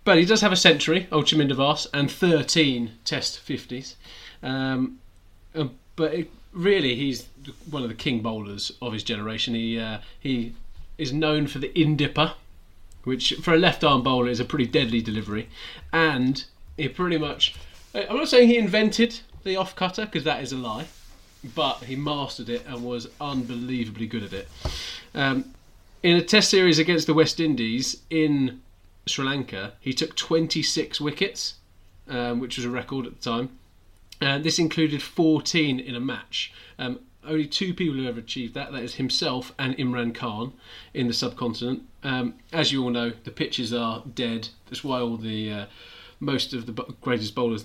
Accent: British